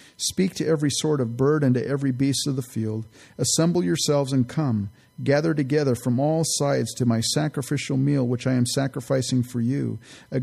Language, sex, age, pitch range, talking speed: English, male, 40-59, 115-140 Hz, 190 wpm